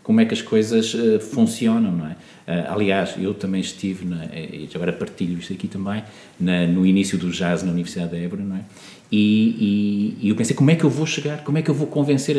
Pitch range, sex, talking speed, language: 105-170 Hz, male, 225 wpm, Portuguese